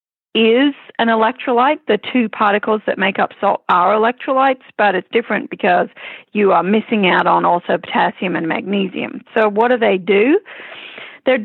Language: English